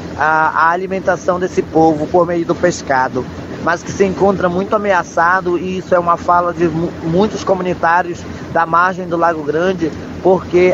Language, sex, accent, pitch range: Portuguese, male, Brazilian, 165-180 Hz